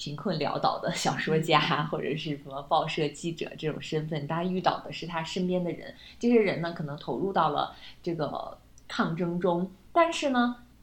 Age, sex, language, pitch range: 20-39, female, Chinese, 155-215 Hz